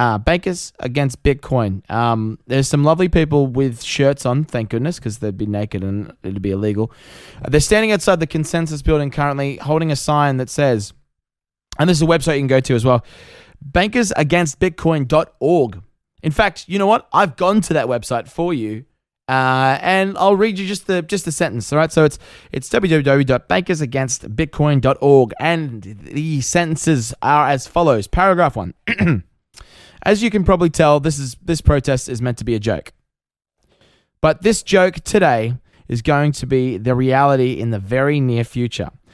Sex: male